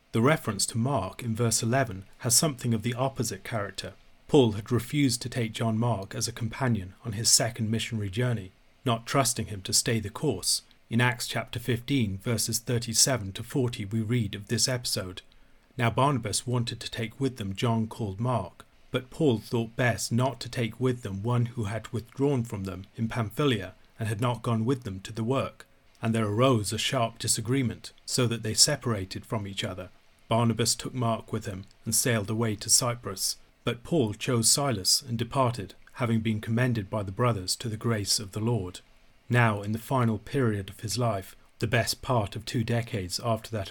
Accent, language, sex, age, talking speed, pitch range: British, English, male, 40-59, 195 wpm, 110-125 Hz